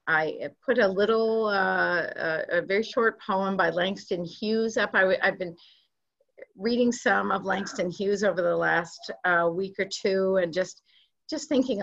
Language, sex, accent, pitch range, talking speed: English, female, American, 165-215 Hz, 165 wpm